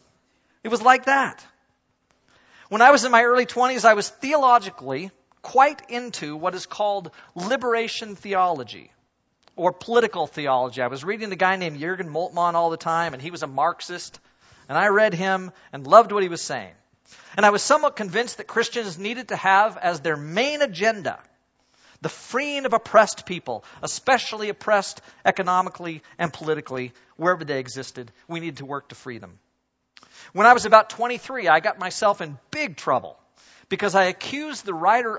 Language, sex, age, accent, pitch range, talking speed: English, male, 40-59, American, 160-235 Hz, 170 wpm